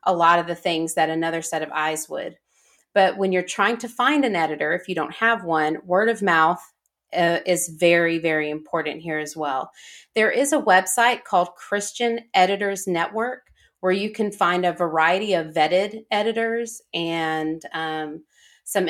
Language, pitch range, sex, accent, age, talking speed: English, 160-200 Hz, female, American, 30-49, 175 wpm